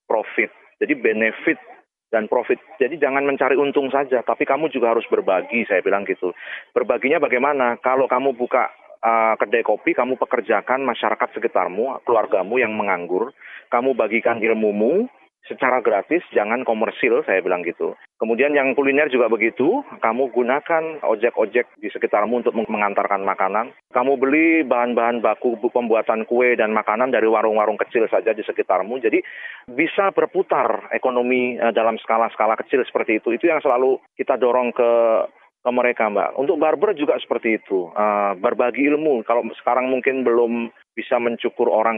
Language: Indonesian